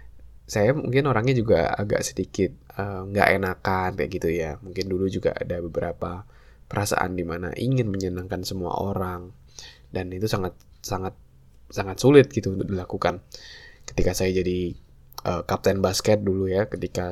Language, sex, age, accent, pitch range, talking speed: Indonesian, male, 10-29, native, 90-110 Hz, 145 wpm